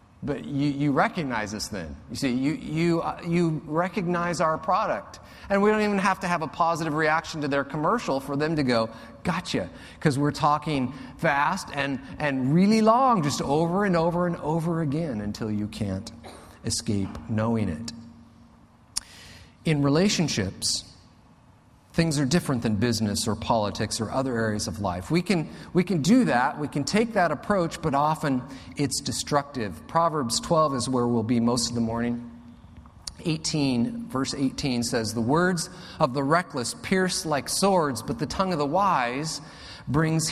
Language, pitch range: English, 120-175 Hz